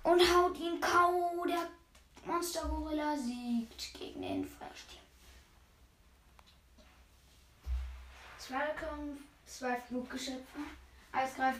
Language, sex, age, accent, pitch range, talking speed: German, female, 10-29, German, 230-290 Hz, 70 wpm